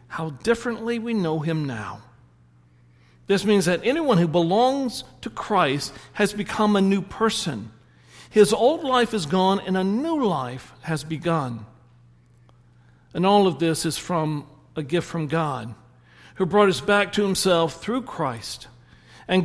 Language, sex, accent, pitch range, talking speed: English, male, American, 125-200 Hz, 150 wpm